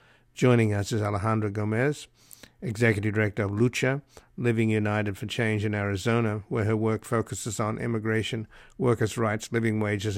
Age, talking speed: 60-79, 145 wpm